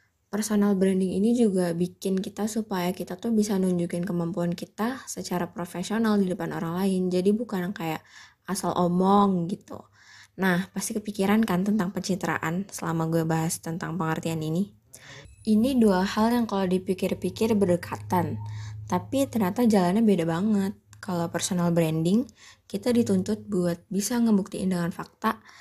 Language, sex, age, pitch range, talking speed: Indonesian, female, 20-39, 175-210 Hz, 140 wpm